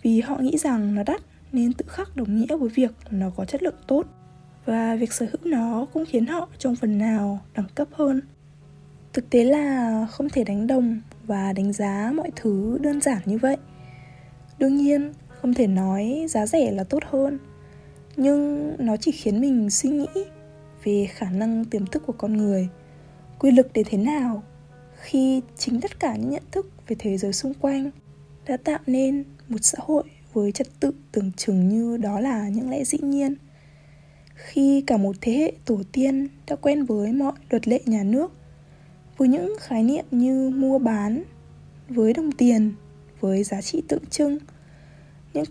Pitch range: 200-275 Hz